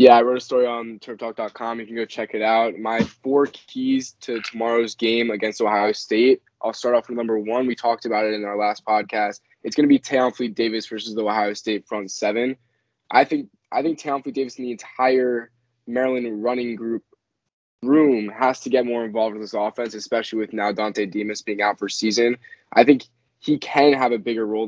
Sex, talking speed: male, 210 wpm